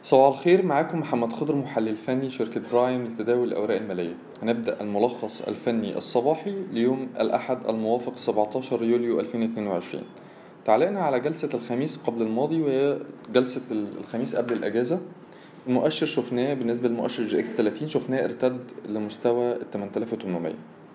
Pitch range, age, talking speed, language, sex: 120-160 Hz, 20-39, 125 wpm, Arabic, male